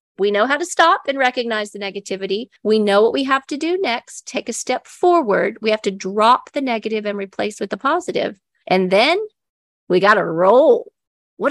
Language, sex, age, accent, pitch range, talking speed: English, female, 40-59, American, 220-295 Hz, 205 wpm